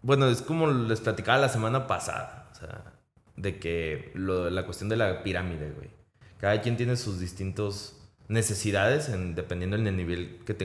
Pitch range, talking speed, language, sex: 95-120 Hz, 175 wpm, Spanish, male